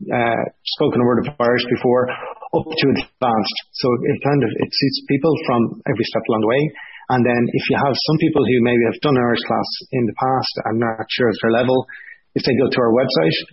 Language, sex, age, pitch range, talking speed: English, male, 30-49, 115-135 Hz, 230 wpm